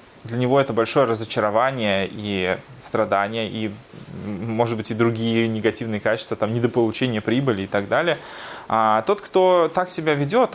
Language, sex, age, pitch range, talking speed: Russian, male, 20-39, 110-145 Hz, 150 wpm